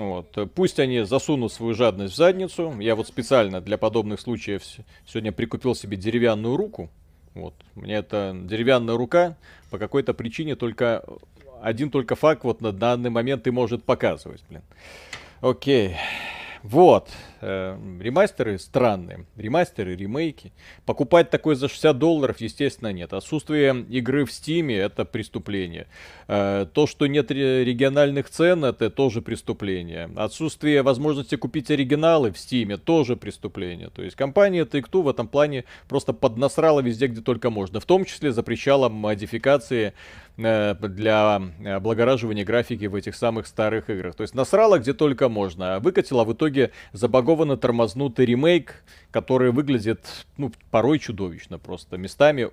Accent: native